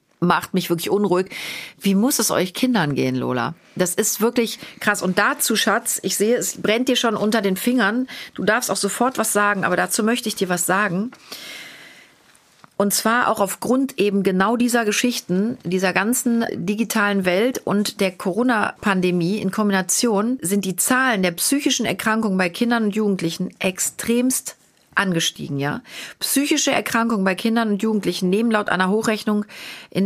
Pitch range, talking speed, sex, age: 185-230 Hz, 160 wpm, female, 40-59